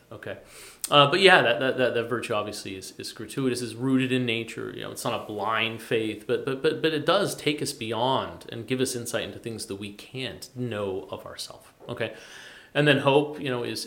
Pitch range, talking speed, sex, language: 105-125 Hz, 225 wpm, male, English